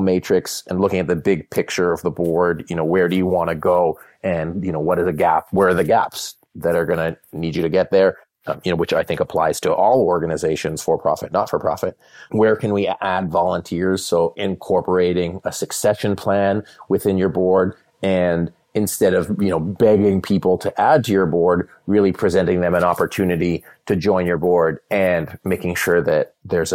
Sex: male